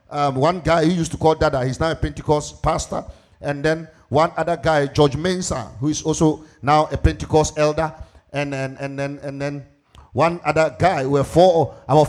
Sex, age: male, 50-69